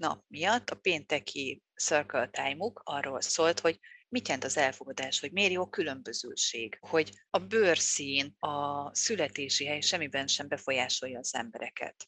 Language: Hungarian